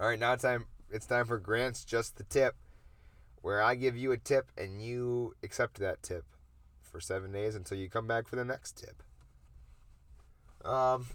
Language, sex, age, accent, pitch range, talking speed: English, male, 30-49, American, 95-130 Hz, 190 wpm